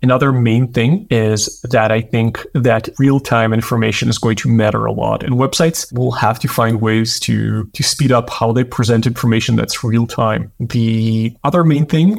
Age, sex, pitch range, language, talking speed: 30-49, male, 115-130 Hz, English, 180 wpm